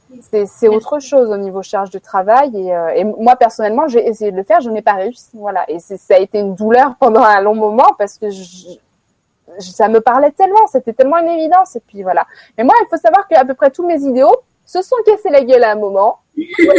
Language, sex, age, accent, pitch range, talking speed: French, female, 20-39, French, 210-270 Hz, 250 wpm